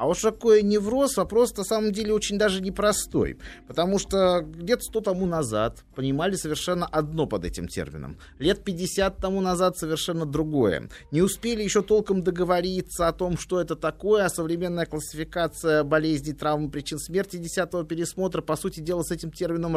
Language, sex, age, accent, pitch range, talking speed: Russian, male, 30-49, native, 135-180 Hz, 165 wpm